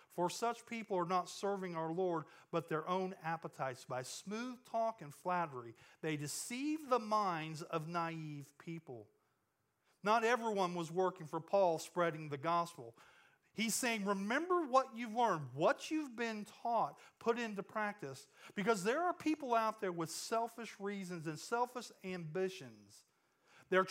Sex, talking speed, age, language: male, 150 wpm, 40-59, English